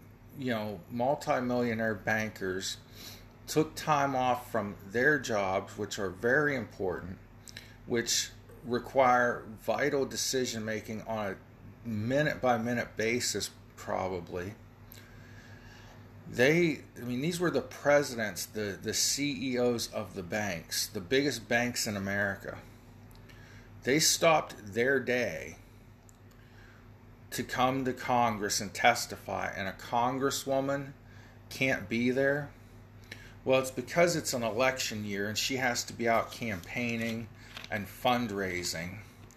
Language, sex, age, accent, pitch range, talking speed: English, male, 40-59, American, 110-120 Hz, 110 wpm